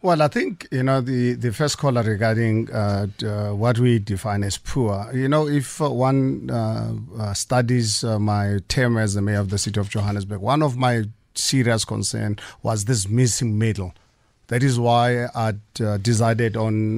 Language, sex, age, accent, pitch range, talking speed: English, male, 50-69, South African, 110-135 Hz, 185 wpm